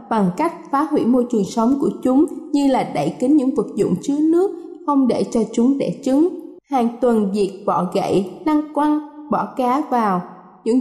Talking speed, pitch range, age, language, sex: 195 wpm, 220-300 Hz, 20-39, Vietnamese, female